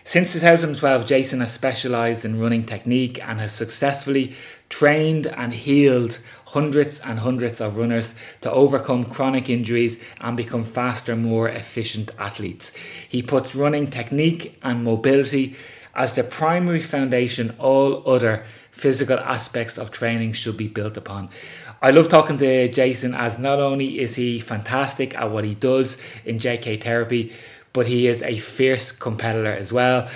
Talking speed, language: 150 wpm, English